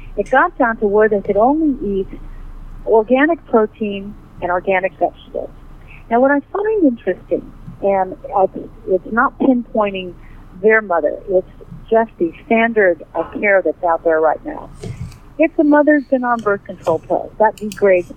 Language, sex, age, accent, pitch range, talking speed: English, female, 50-69, American, 165-225 Hz, 150 wpm